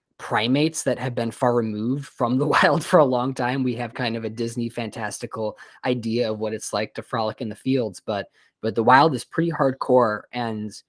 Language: English